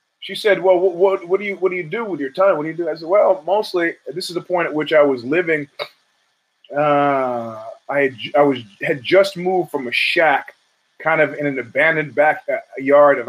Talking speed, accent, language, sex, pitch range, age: 225 wpm, American, English, male, 135-165 Hz, 30-49